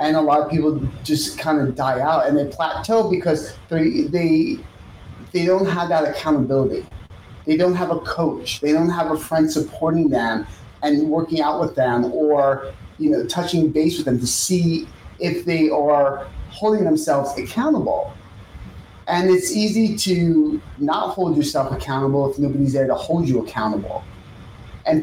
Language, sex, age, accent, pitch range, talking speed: English, male, 30-49, American, 125-170 Hz, 165 wpm